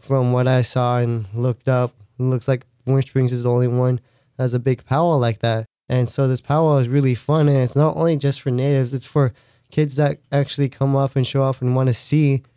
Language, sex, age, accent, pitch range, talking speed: English, male, 20-39, American, 120-130 Hz, 245 wpm